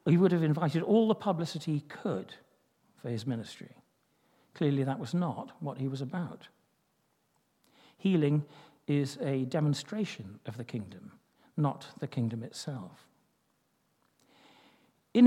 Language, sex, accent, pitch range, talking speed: English, male, British, 135-170 Hz, 125 wpm